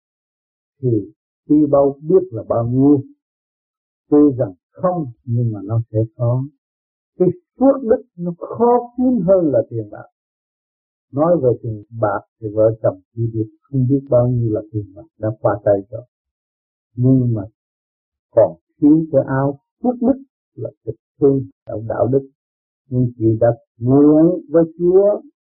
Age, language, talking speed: 60-79, Vietnamese, 155 wpm